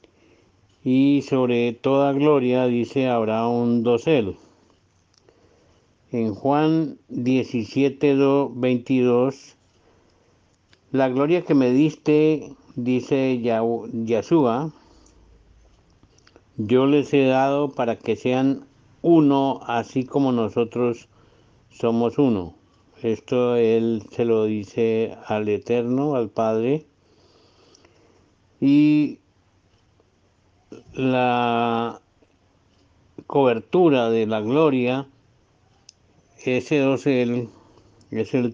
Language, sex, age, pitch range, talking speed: Spanish, male, 60-79, 105-130 Hz, 80 wpm